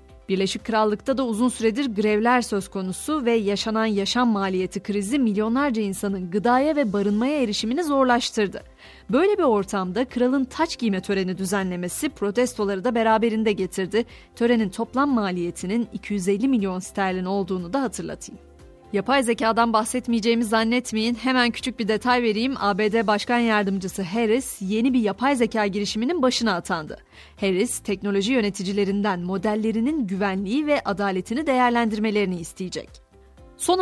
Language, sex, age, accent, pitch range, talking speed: Turkish, female, 30-49, native, 195-250 Hz, 125 wpm